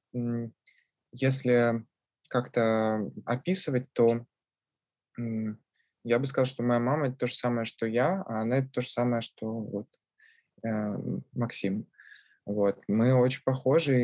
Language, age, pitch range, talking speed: Russian, 20-39, 110-125 Hz, 125 wpm